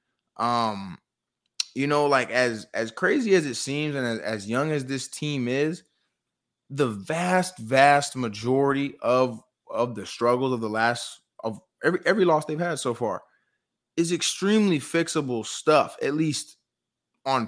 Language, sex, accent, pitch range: English, male, American, 115-145 Hz